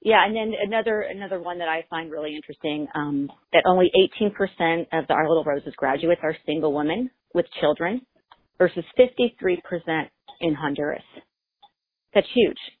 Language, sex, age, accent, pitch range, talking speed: English, female, 40-59, American, 150-205 Hz, 165 wpm